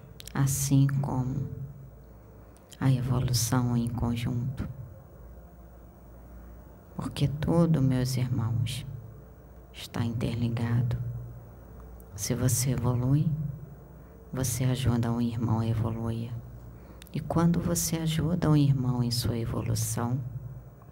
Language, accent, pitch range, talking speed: Portuguese, Brazilian, 115-135 Hz, 85 wpm